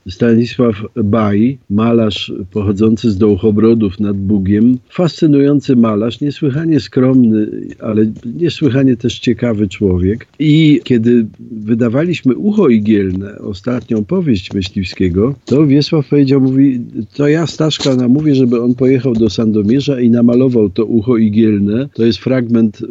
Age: 50-69